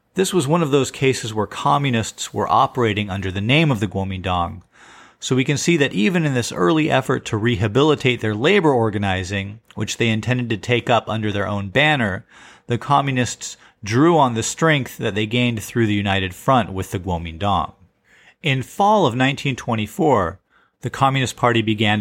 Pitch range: 105-135 Hz